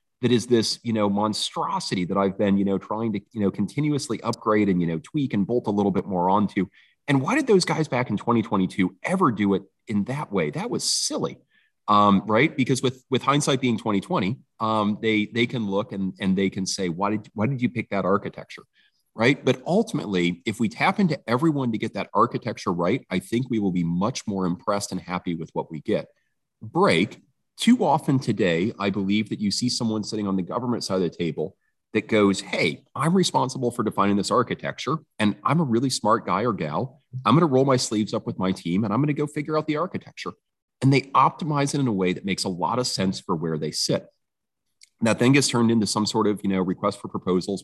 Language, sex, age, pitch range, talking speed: English, male, 30-49, 100-130 Hz, 230 wpm